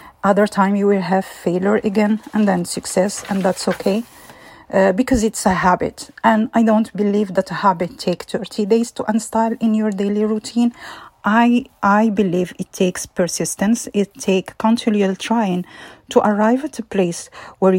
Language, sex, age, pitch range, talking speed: English, female, 40-59, 185-225 Hz, 170 wpm